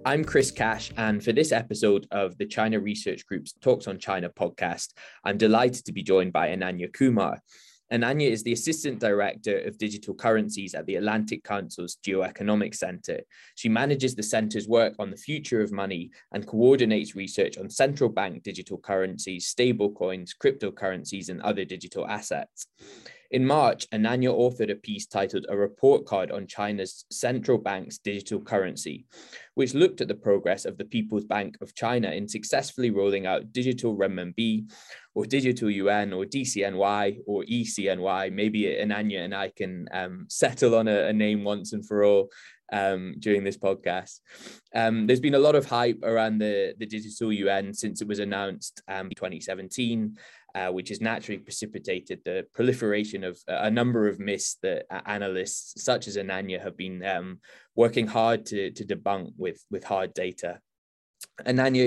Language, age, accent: English, 20-39, British